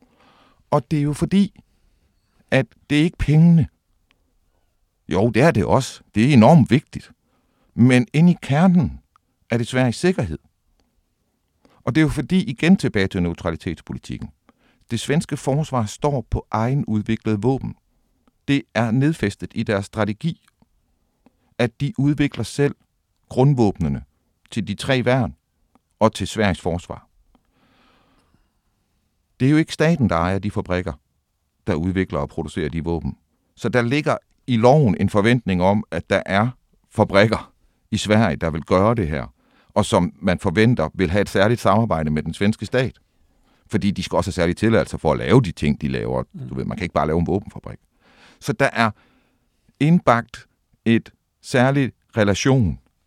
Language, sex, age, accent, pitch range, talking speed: Danish, male, 60-79, native, 90-130 Hz, 155 wpm